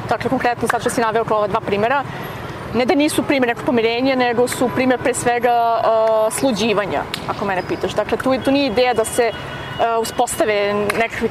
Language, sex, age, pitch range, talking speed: English, female, 30-49, 225-280 Hz, 180 wpm